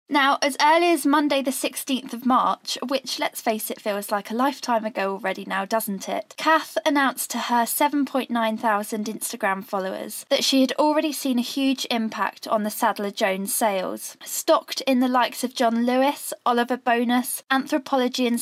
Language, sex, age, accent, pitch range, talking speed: English, female, 10-29, British, 220-275 Hz, 175 wpm